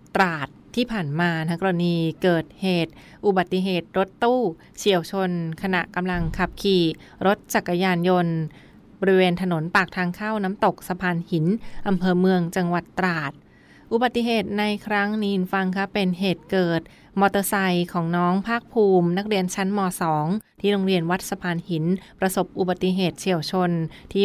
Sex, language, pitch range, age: female, Thai, 170-195 Hz, 20-39